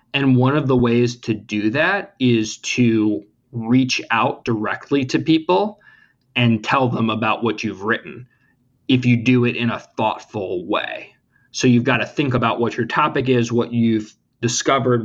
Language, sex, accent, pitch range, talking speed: English, male, American, 115-130 Hz, 170 wpm